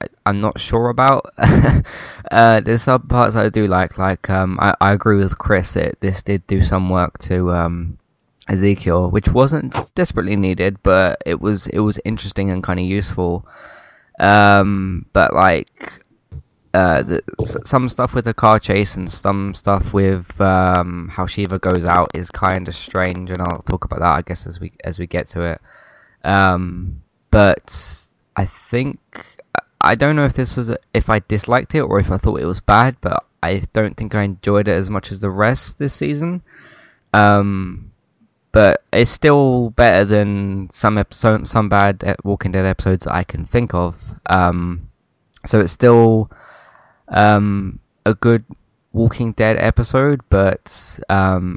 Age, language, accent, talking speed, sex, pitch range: 20-39, English, British, 170 wpm, male, 95-110 Hz